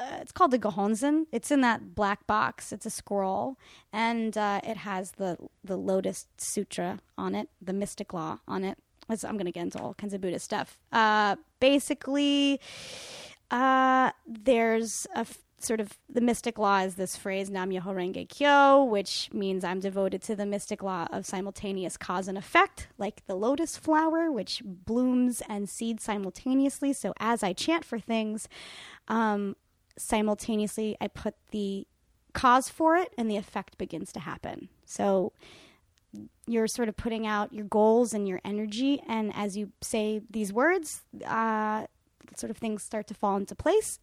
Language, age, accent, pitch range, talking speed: English, 20-39, American, 200-260 Hz, 170 wpm